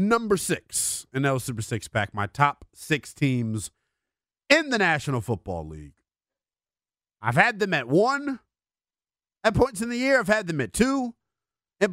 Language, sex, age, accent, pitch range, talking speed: English, male, 30-49, American, 130-215 Hz, 160 wpm